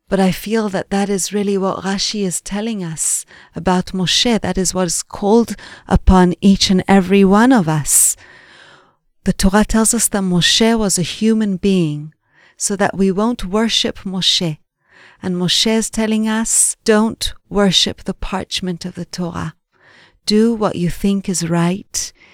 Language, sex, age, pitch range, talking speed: English, female, 40-59, 175-215 Hz, 160 wpm